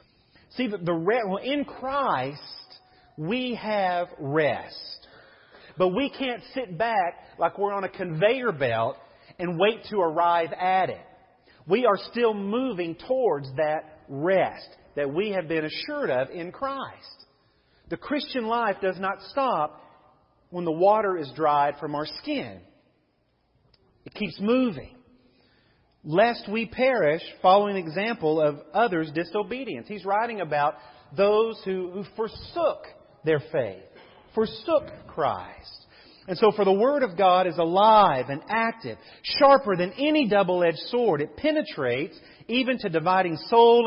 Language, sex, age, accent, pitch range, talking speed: English, male, 40-59, American, 165-235 Hz, 135 wpm